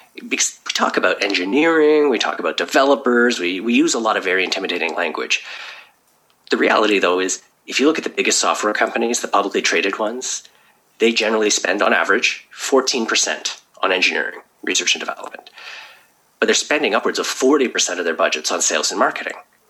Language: English